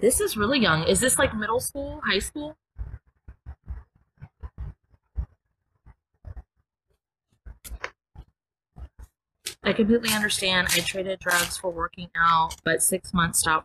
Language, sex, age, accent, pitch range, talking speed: English, female, 20-39, American, 160-210 Hz, 105 wpm